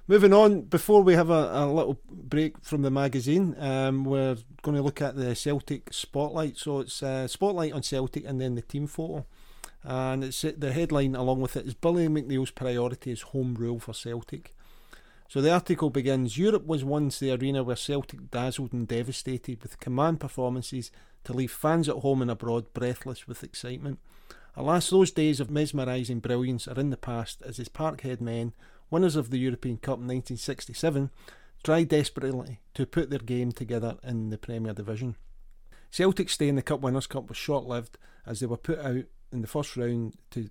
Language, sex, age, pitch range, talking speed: English, male, 40-59, 120-145 Hz, 190 wpm